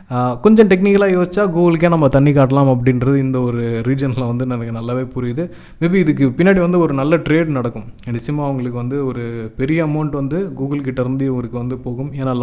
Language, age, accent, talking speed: Tamil, 20-39, native, 175 wpm